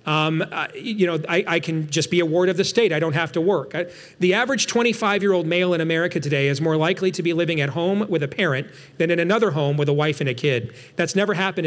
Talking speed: 260 wpm